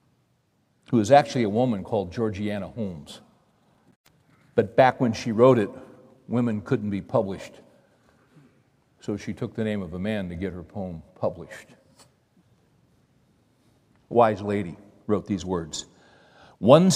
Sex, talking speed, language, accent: male, 135 wpm, English, American